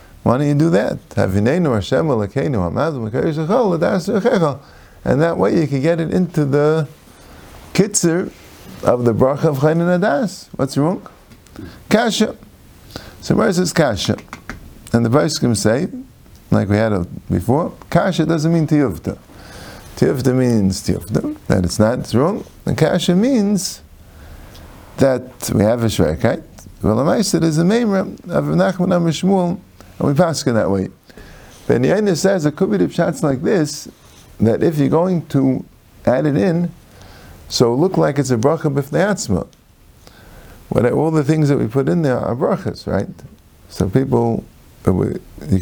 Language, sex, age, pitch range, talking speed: English, male, 50-69, 105-170 Hz, 145 wpm